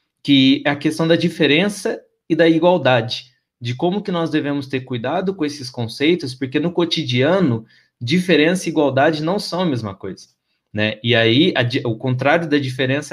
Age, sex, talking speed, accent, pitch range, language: 20-39, male, 170 wpm, Brazilian, 130-170 Hz, Portuguese